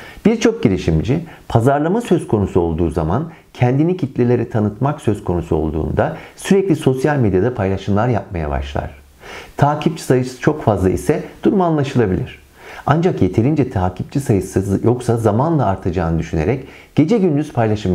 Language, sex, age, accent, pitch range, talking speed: Turkish, male, 50-69, native, 95-140 Hz, 125 wpm